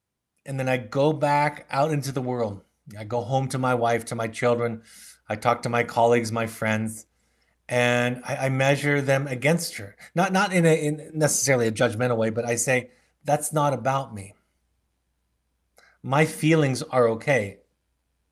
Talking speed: 170 wpm